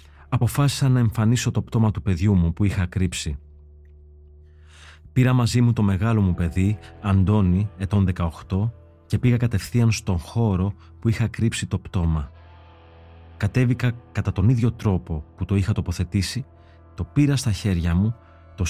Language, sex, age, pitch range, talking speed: English, male, 30-49, 85-110 Hz, 150 wpm